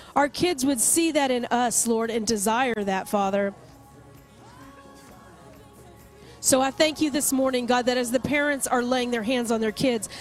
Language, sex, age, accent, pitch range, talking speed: English, female, 40-59, American, 235-290 Hz, 175 wpm